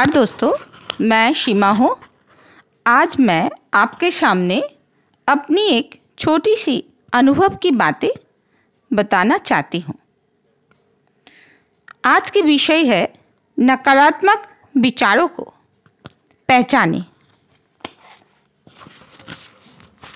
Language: Hindi